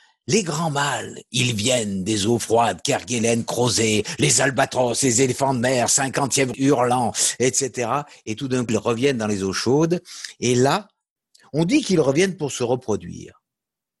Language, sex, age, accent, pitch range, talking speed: French, male, 50-69, French, 115-165 Hz, 165 wpm